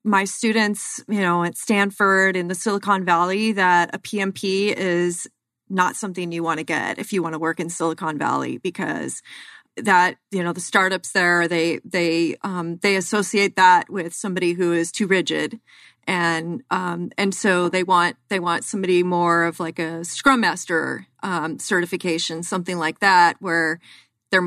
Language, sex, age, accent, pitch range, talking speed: English, female, 30-49, American, 175-205 Hz, 170 wpm